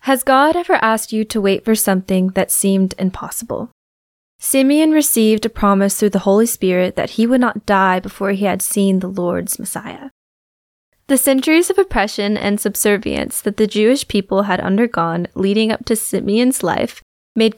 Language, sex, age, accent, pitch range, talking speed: English, female, 10-29, American, 190-230 Hz, 170 wpm